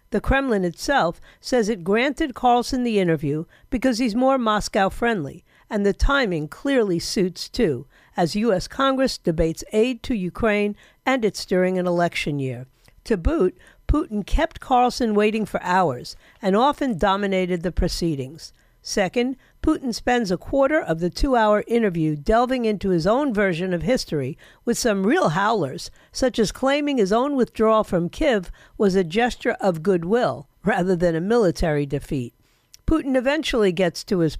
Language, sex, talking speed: English, female, 155 wpm